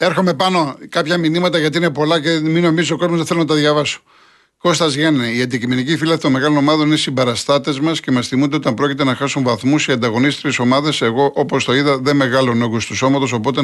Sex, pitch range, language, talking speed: male, 125-155 Hz, Greek, 220 wpm